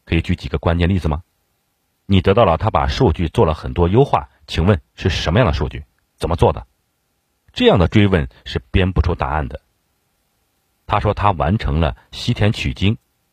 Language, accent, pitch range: Chinese, native, 75-105 Hz